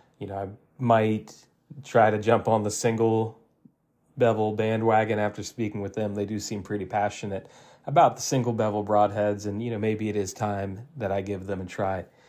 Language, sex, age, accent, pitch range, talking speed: English, male, 30-49, American, 100-115 Hz, 190 wpm